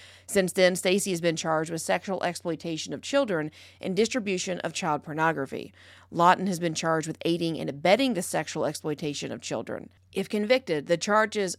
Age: 40-59